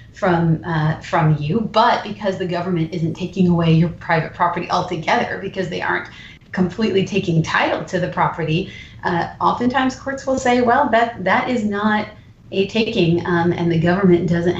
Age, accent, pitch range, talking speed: 30-49, American, 170-210 Hz, 170 wpm